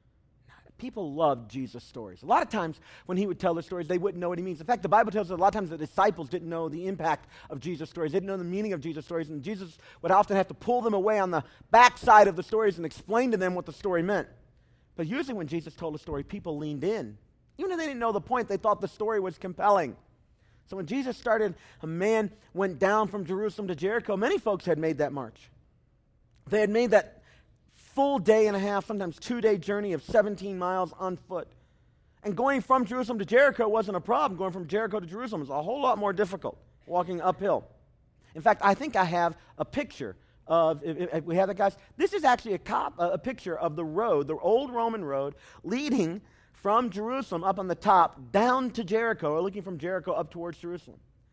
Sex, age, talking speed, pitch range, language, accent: male, 40-59, 230 wpm, 170-220 Hz, English, American